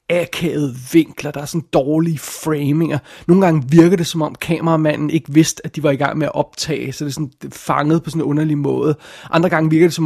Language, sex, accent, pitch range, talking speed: Danish, male, native, 145-165 Hz, 250 wpm